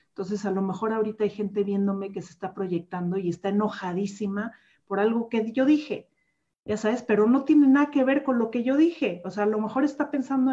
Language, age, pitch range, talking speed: Spanish, 40-59, 185-240 Hz, 230 wpm